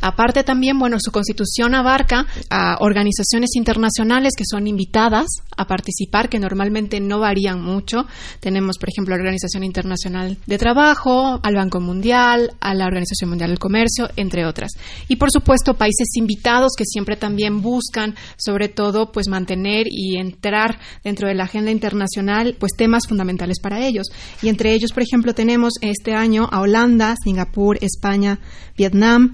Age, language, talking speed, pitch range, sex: 30-49, Spanish, 160 wpm, 195-235 Hz, female